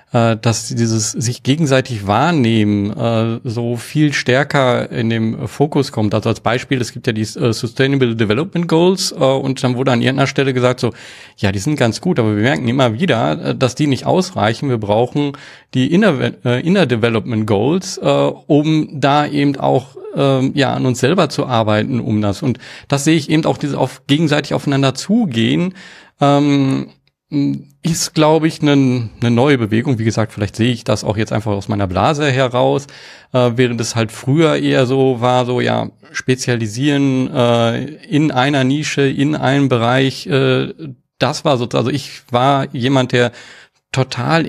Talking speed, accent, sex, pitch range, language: 175 wpm, German, male, 115-145 Hz, German